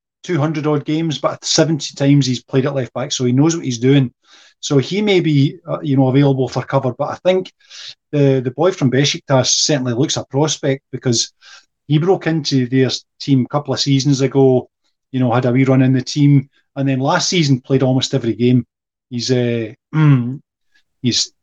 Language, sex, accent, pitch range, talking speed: English, male, British, 125-145 Hz, 190 wpm